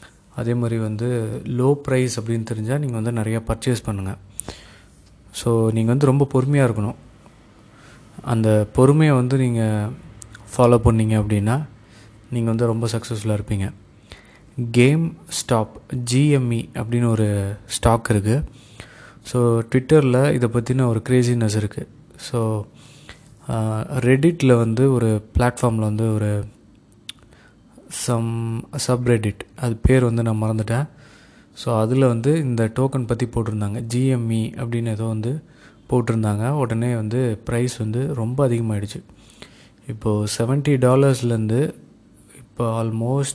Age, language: 20-39, Tamil